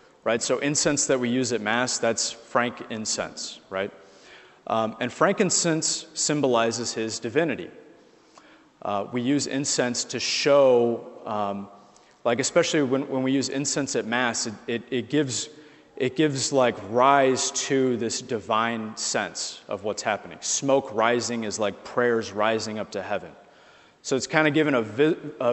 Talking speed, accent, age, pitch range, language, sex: 150 wpm, American, 30-49, 110-135 Hz, English, male